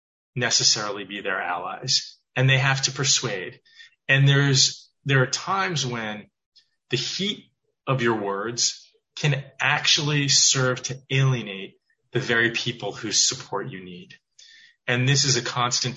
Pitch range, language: 120-145 Hz, English